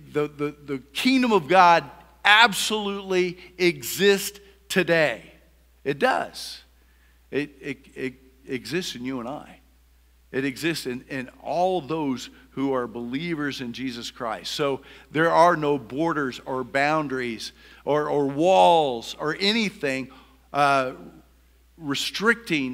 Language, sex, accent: English, male, American